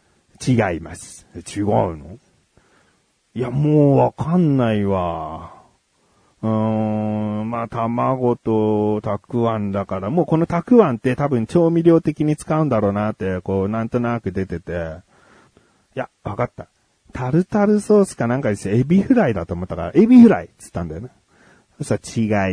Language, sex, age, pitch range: Japanese, male, 40-59, 100-135 Hz